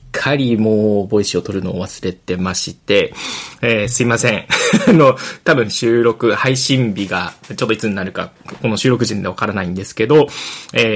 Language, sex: Japanese, male